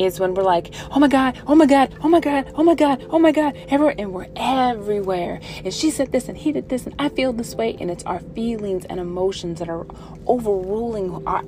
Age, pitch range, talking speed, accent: 30-49, 180-230 Hz, 240 wpm, American